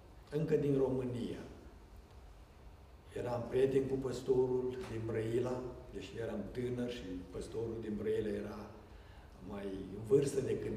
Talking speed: 115 wpm